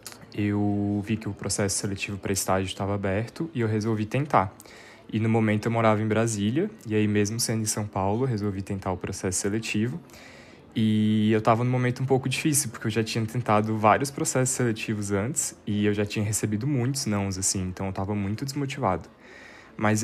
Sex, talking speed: male, 195 wpm